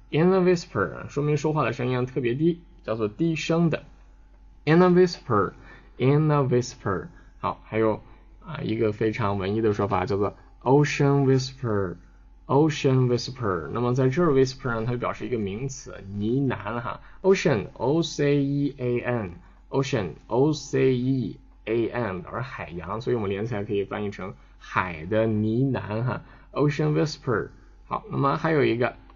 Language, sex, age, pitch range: Chinese, male, 10-29, 100-140 Hz